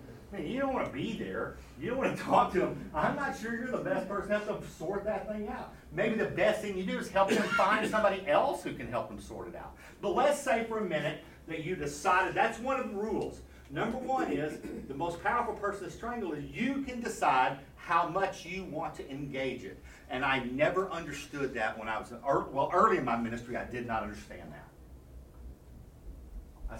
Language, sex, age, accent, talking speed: English, male, 50-69, American, 225 wpm